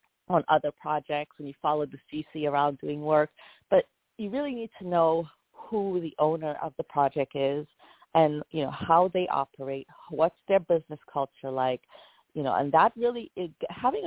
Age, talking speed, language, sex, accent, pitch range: 40-59, 180 wpm, English, female, American, 140-175 Hz